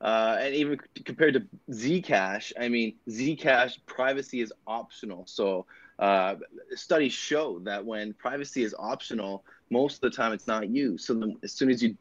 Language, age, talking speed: English, 20-39, 165 wpm